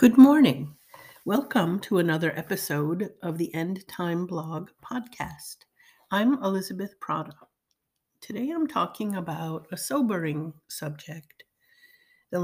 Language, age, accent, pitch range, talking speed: English, 60-79, American, 165-220 Hz, 110 wpm